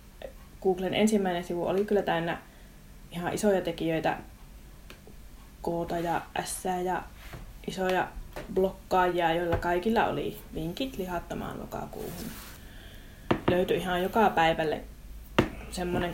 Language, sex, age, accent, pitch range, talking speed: Finnish, female, 20-39, native, 170-205 Hz, 95 wpm